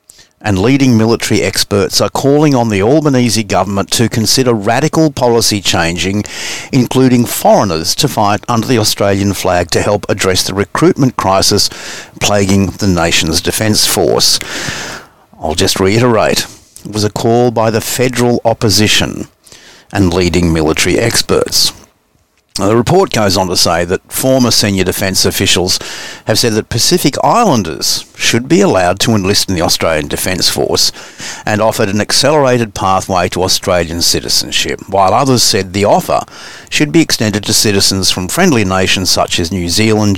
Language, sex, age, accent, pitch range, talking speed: English, male, 50-69, Australian, 95-125 Hz, 150 wpm